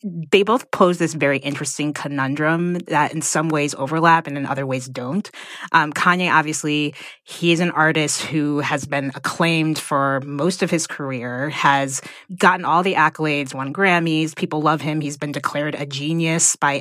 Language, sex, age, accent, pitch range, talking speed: English, female, 20-39, American, 145-180 Hz, 175 wpm